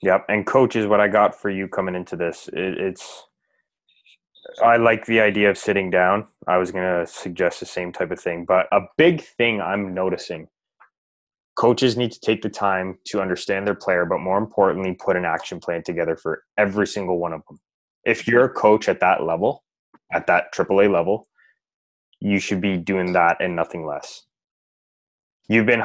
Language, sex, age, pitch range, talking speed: English, male, 20-39, 90-105 Hz, 195 wpm